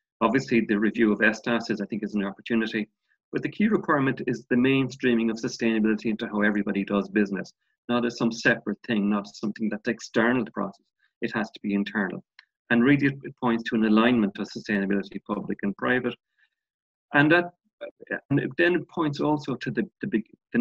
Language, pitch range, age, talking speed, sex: English, 105-130 Hz, 40-59, 190 wpm, male